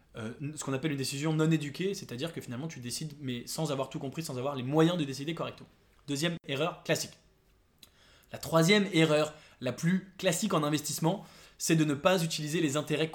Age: 20-39